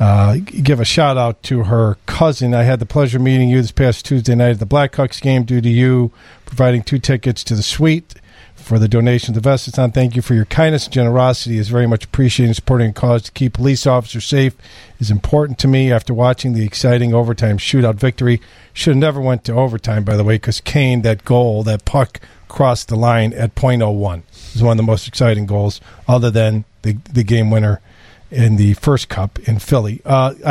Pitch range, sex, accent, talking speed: 110-135 Hz, male, American, 220 wpm